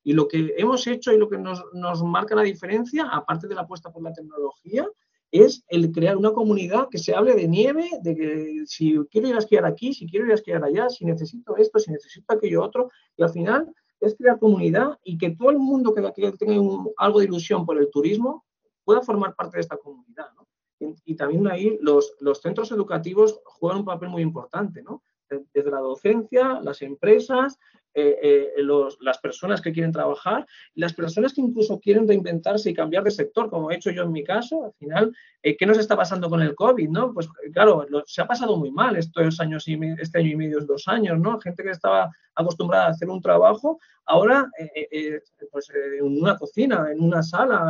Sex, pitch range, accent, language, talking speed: male, 160-225 Hz, Spanish, Spanish, 215 wpm